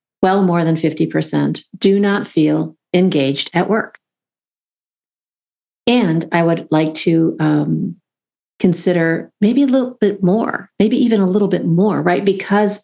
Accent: American